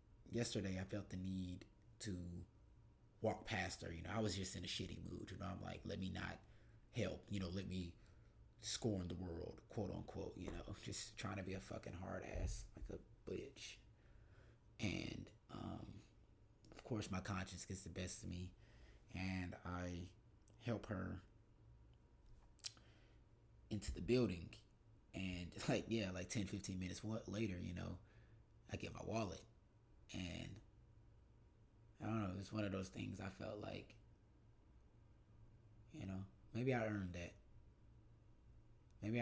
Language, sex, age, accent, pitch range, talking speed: English, male, 30-49, American, 95-110 Hz, 150 wpm